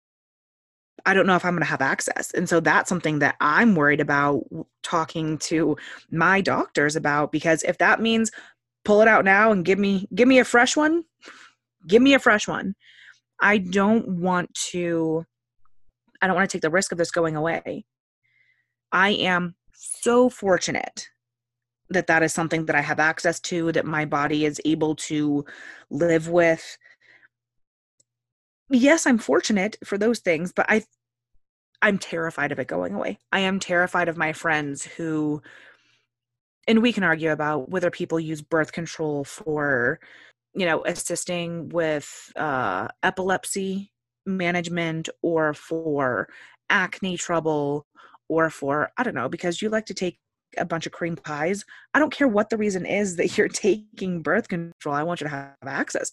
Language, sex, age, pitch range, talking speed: English, female, 20-39, 150-190 Hz, 165 wpm